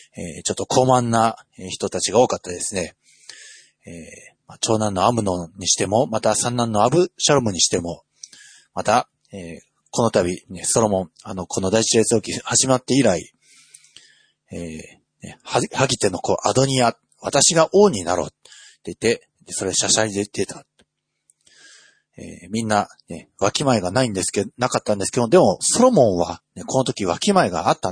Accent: native